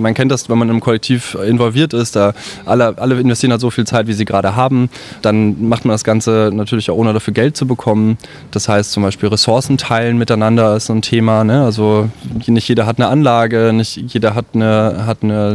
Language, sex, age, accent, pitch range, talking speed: German, male, 20-39, German, 105-120 Hz, 205 wpm